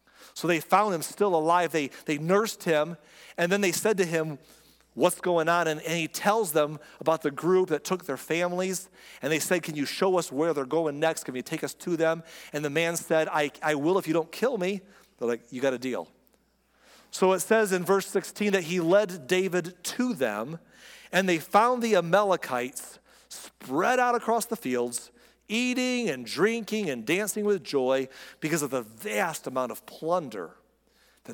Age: 40-59